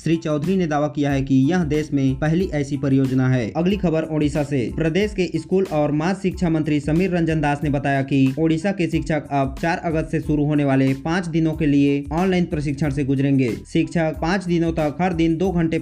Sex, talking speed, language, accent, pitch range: male, 215 wpm, Hindi, native, 150-170 Hz